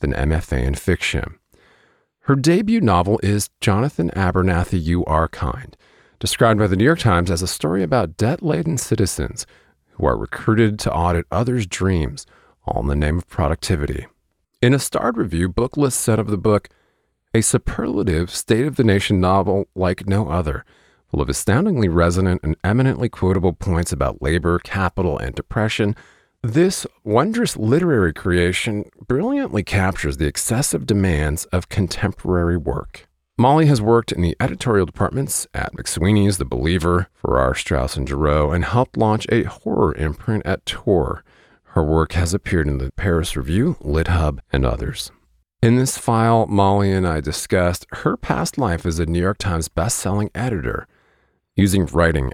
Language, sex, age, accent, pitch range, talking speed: English, male, 40-59, American, 80-110 Hz, 155 wpm